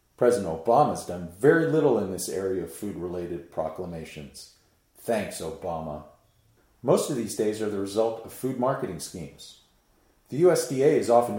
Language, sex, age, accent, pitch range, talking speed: English, male, 40-59, American, 95-140 Hz, 155 wpm